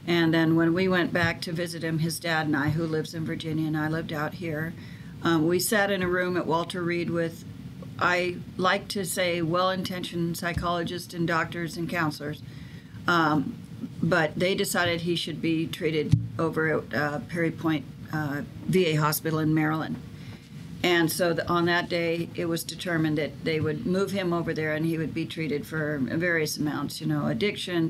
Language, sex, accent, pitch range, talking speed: English, female, American, 155-180 Hz, 185 wpm